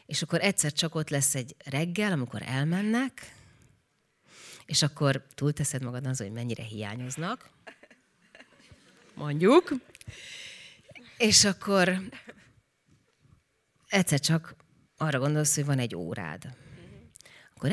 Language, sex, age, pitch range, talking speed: Hungarian, female, 30-49, 135-175 Hz, 100 wpm